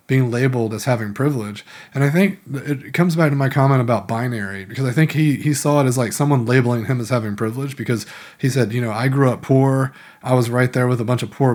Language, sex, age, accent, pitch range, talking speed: English, male, 30-49, American, 115-140 Hz, 255 wpm